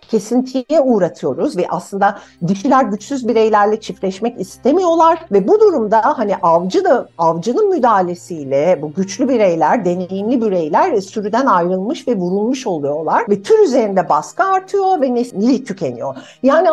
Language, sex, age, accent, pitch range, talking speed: Turkish, female, 60-79, native, 180-295 Hz, 130 wpm